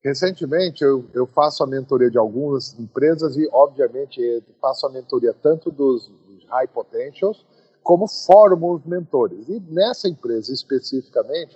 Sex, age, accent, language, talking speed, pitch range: male, 40-59, Brazilian, Portuguese, 135 wpm, 155-220 Hz